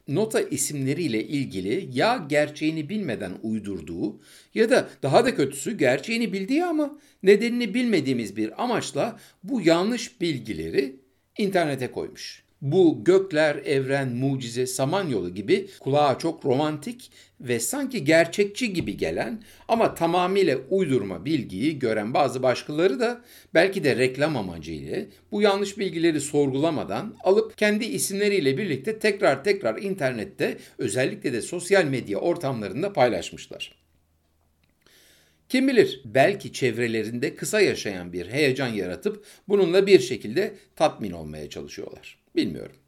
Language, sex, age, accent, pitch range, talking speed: Turkish, male, 60-79, native, 130-215 Hz, 115 wpm